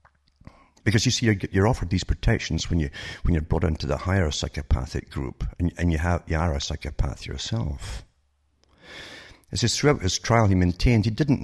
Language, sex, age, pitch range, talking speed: English, male, 60-79, 75-105 Hz, 185 wpm